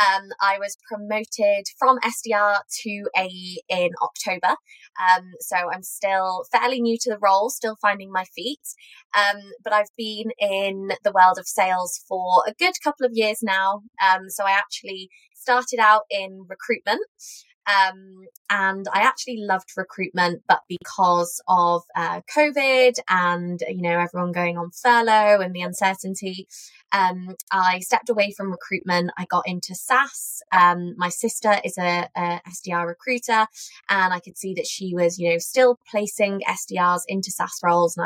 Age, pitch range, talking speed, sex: 20-39, 180-210 Hz, 160 wpm, female